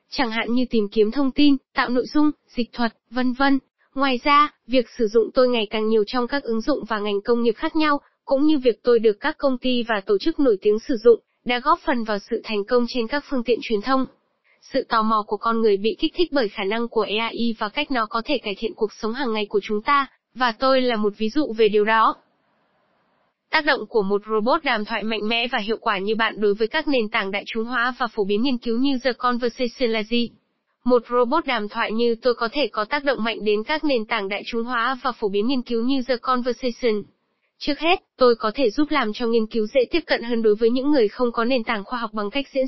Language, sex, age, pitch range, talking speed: Vietnamese, female, 10-29, 220-265 Hz, 260 wpm